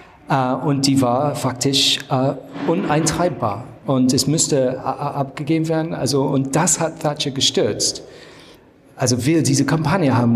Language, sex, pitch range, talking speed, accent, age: German, male, 120-145 Hz, 145 wpm, German, 40-59